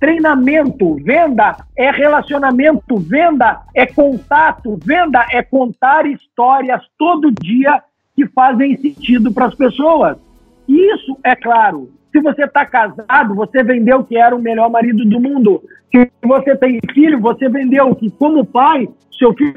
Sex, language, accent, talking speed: male, Portuguese, Brazilian, 140 wpm